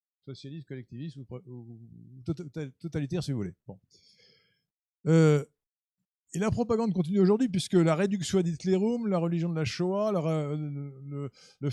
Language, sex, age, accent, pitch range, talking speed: French, male, 50-69, French, 135-185 Hz, 125 wpm